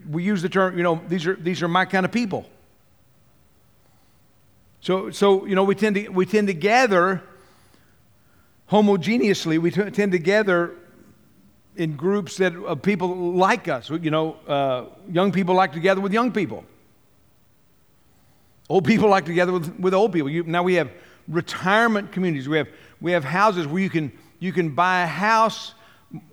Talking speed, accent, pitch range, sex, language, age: 180 wpm, American, 135-190 Hz, male, English, 50-69